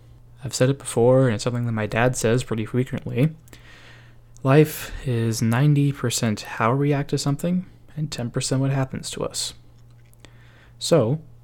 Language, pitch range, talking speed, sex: English, 115-135 Hz, 145 wpm, male